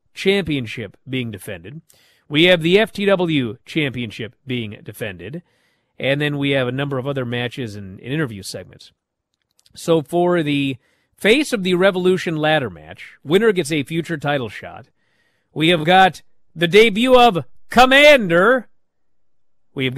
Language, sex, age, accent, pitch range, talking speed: English, male, 40-59, American, 120-175 Hz, 140 wpm